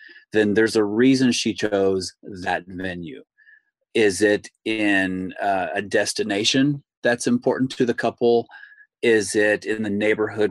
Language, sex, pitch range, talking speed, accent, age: English, male, 95-120 Hz, 135 wpm, American, 30-49